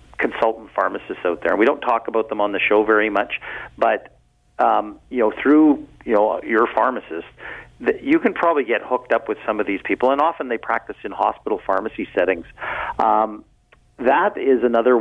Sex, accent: male, American